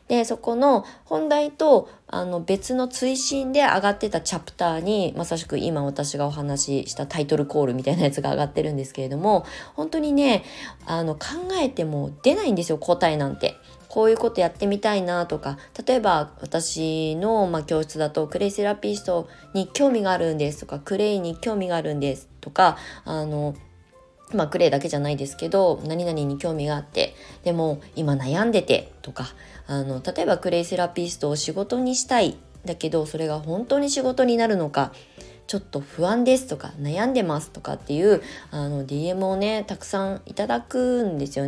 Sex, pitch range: female, 150-220 Hz